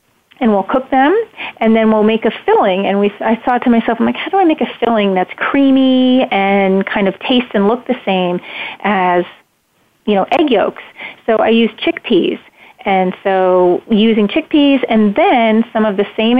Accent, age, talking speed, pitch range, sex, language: American, 30-49, 195 wpm, 195-240 Hz, female, English